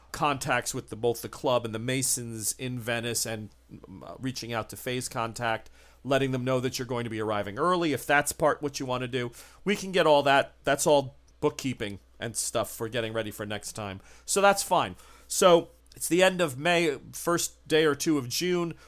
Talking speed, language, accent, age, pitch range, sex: 210 wpm, English, American, 40-59, 120-150 Hz, male